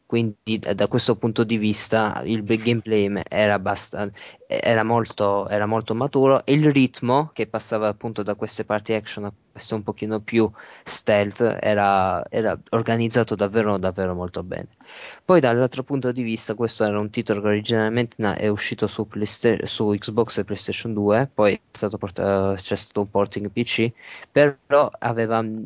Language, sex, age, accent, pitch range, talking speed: Italian, male, 20-39, native, 105-120 Hz, 170 wpm